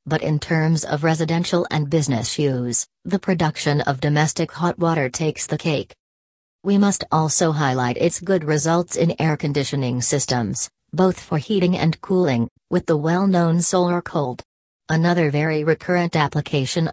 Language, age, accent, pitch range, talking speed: English, 40-59, American, 145-175 Hz, 150 wpm